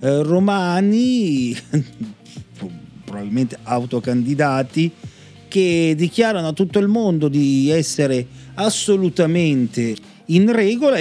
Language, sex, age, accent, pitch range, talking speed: Italian, male, 40-59, native, 140-195 Hz, 75 wpm